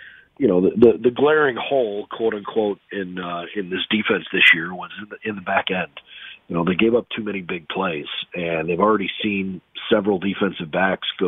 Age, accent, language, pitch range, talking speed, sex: 40-59, American, English, 85-105 Hz, 215 wpm, male